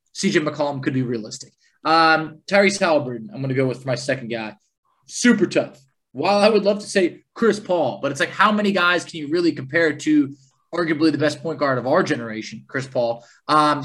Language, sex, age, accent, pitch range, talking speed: English, male, 20-39, American, 140-180 Hz, 210 wpm